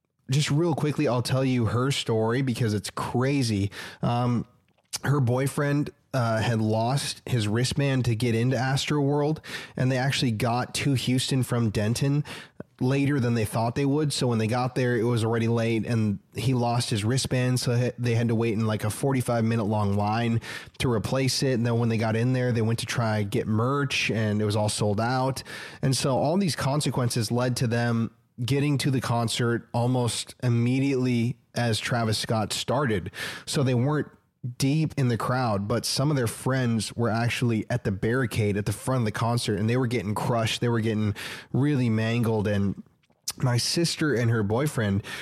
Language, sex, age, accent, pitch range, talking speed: English, male, 20-39, American, 115-130 Hz, 190 wpm